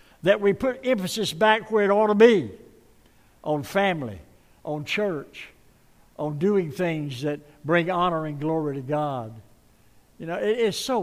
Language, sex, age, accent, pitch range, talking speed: English, male, 60-79, American, 135-185 Hz, 160 wpm